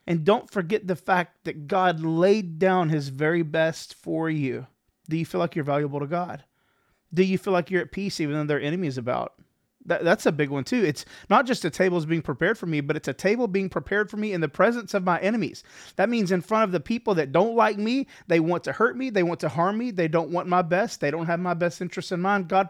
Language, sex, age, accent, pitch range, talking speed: English, male, 30-49, American, 155-195 Hz, 260 wpm